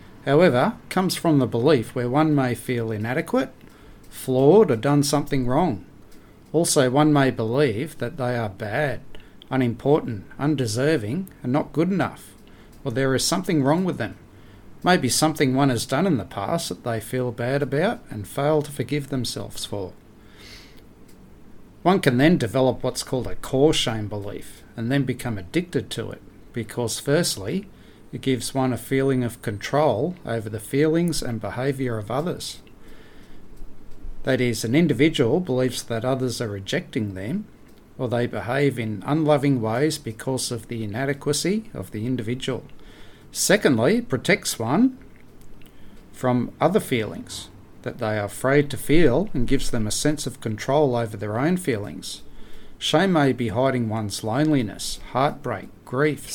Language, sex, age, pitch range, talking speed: English, male, 40-59, 115-145 Hz, 150 wpm